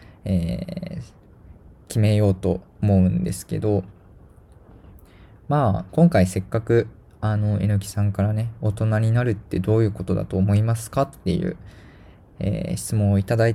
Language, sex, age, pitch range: Japanese, male, 20-39, 95-110 Hz